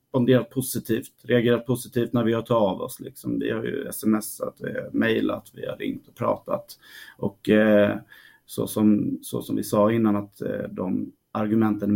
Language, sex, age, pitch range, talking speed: Swedish, male, 30-49, 105-130 Hz, 160 wpm